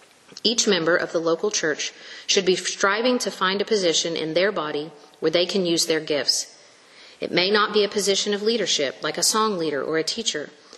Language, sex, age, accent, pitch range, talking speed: English, female, 40-59, American, 170-215 Hz, 205 wpm